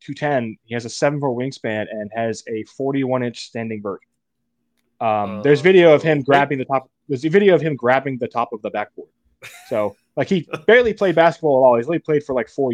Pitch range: 110-150 Hz